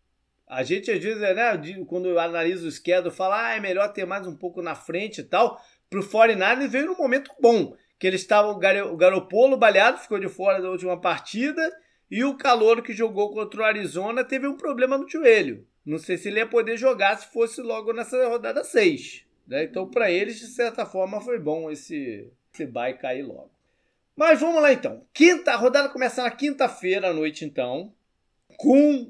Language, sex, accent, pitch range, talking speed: Portuguese, male, Brazilian, 185-260 Hz, 200 wpm